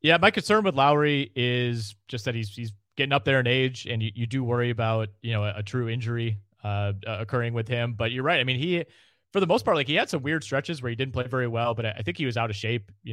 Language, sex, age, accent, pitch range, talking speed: English, male, 30-49, American, 110-130 Hz, 285 wpm